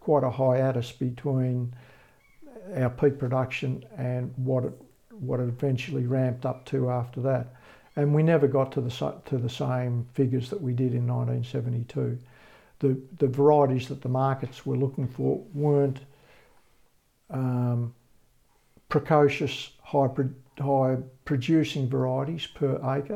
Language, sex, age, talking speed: English, male, 60-79, 130 wpm